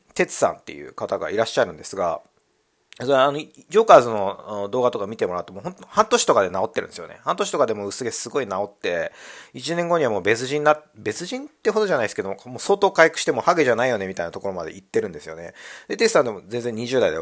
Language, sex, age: Japanese, male, 40-59